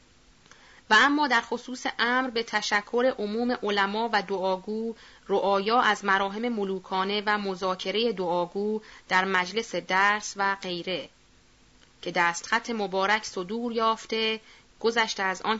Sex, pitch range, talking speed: female, 190-225 Hz, 120 wpm